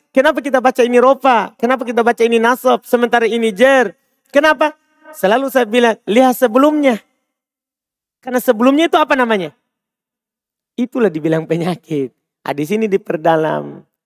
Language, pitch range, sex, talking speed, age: Indonesian, 185-255 Hz, male, 130 wpm, 40-59